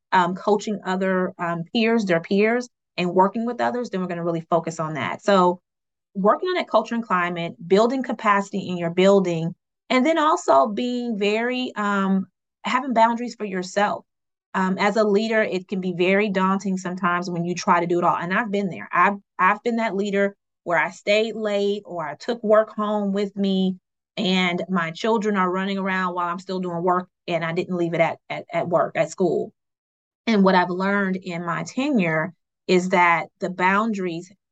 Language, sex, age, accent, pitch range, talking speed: English, female, 30-49, American, 175-205 Hz, 195 wpm